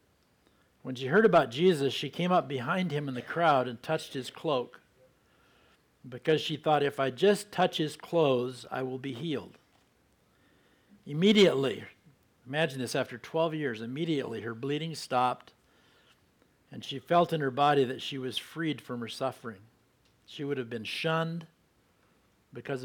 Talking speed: 155 wpm